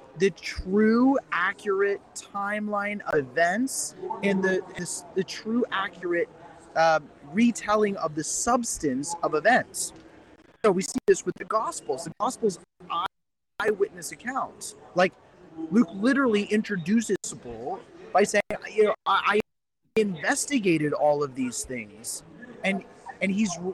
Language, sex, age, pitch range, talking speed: English, male, 30-49, 170-220 Hz, 125 wpm